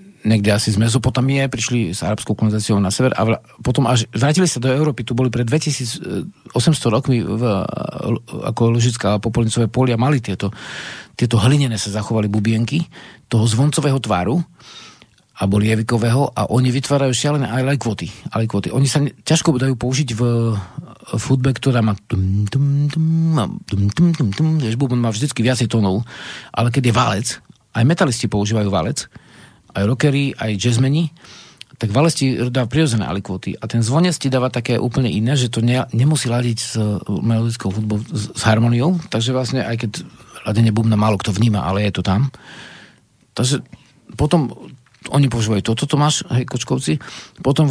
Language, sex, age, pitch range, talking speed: Slovak, male, 50-69, 110-135 Hz, 150 wpm